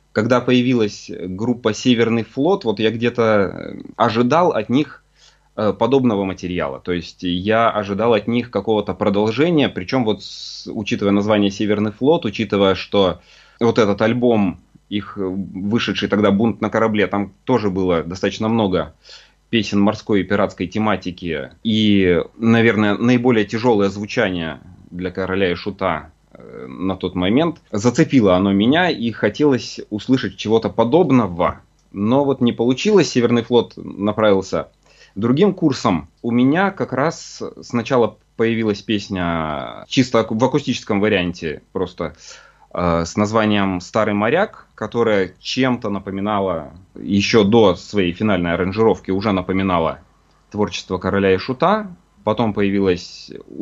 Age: 30-49